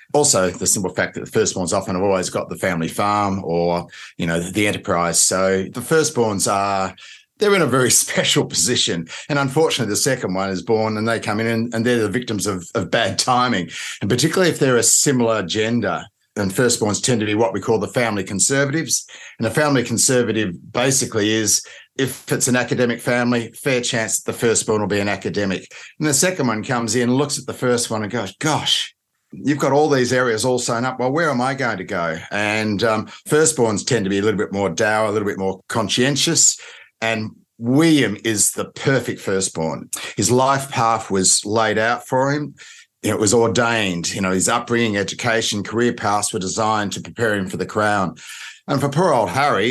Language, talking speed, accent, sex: English, 205 wpm, Australian, male